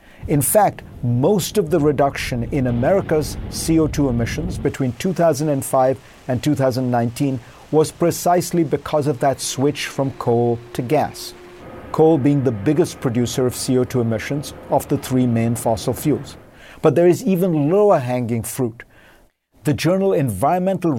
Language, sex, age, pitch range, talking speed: English, male, 50-69, 125-165 Hz, 135 wpm